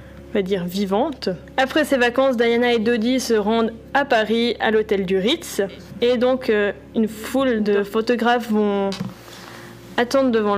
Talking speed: 140 wpm